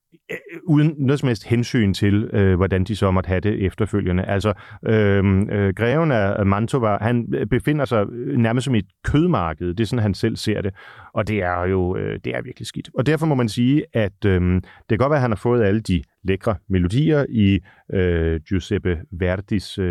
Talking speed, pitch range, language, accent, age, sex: 200 wpm, 90-115 Hz, Danish, native, 30-49, male